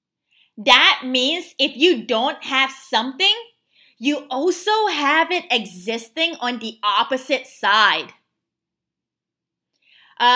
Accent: American